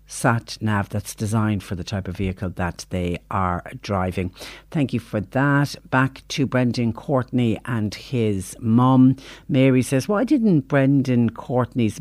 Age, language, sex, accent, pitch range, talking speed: 60-79, English, female, Irish, 110-135 Hz, 150 wpm